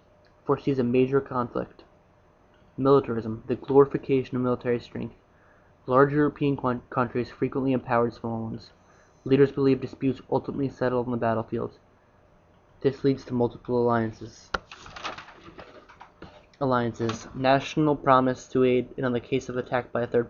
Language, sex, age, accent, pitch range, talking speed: English, male, 20-39, American, 120-130 Hz, 135 wpm